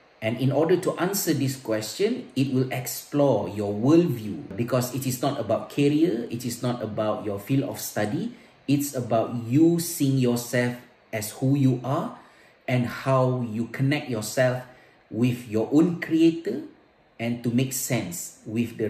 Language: Malay